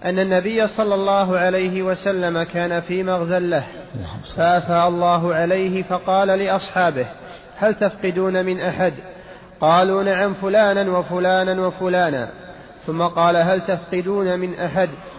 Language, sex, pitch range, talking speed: Arabic, male, 180-195 Hz, 115 wpm